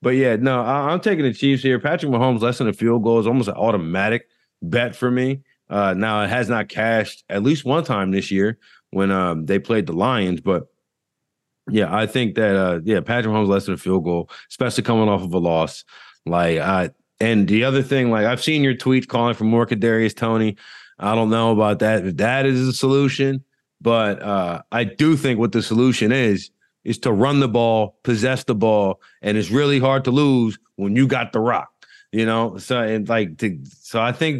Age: 30-49